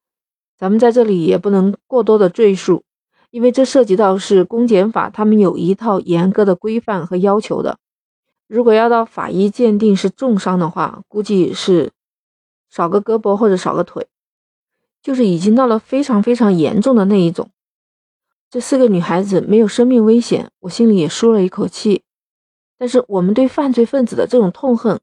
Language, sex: Chinese, female